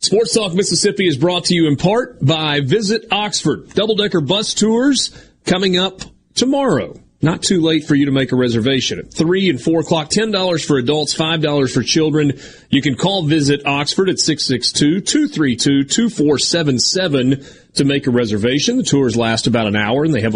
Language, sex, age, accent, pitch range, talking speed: English, male, 40-59, American, 130-165 Hz, 170 wpm